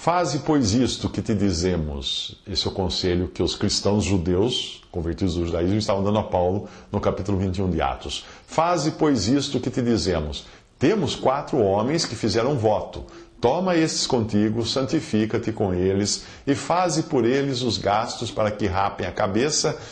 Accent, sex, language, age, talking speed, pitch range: Brazilian, male, English, 50-69, 165 wpm, 100-145 Hz